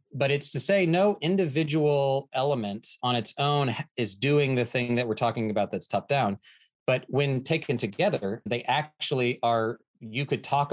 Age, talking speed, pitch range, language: 30-49, 170 wpm, 120-160 Hz, English